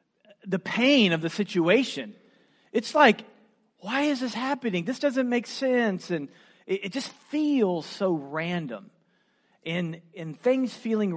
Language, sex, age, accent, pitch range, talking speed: English, male, 40-59, American, 155-210 Hz, 140 wpm